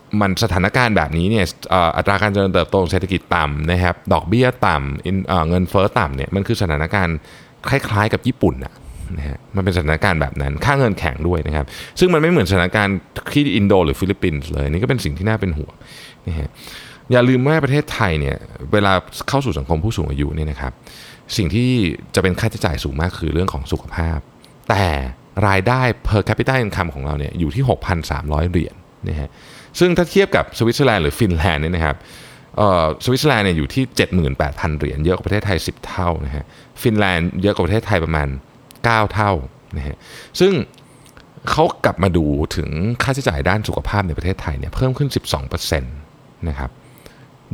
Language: Thai